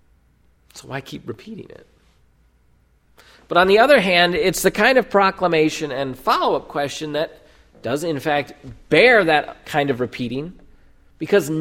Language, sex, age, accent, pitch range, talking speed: English, male, 40-59, American, 130-195 Hz, 140 wpm